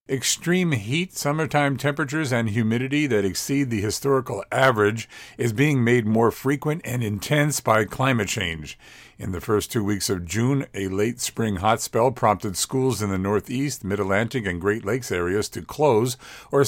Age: 50-69